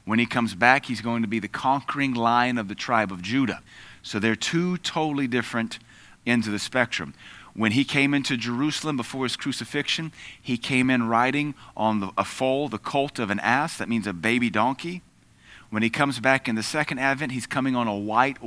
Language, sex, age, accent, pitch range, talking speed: English, male, 30-49, American, 110-135 Hz, 205 wpm